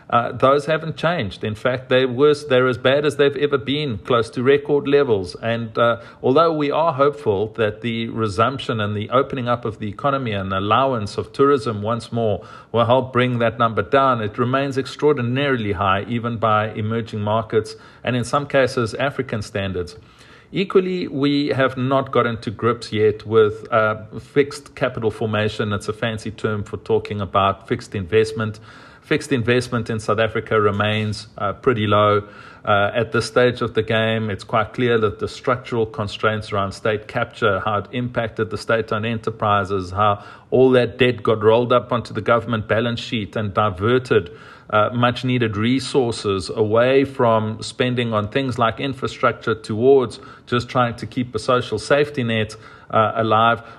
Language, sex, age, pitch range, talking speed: English, male, 40-59, 110-130 Hz, 165 wpm